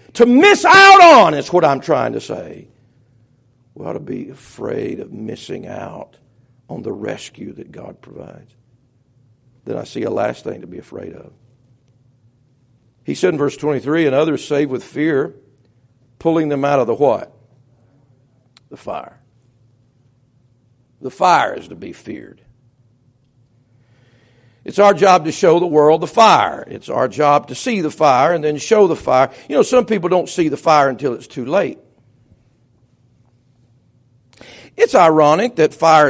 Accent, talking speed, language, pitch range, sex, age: American, 160 wpm, English, 120-155 Hz, male, 60-79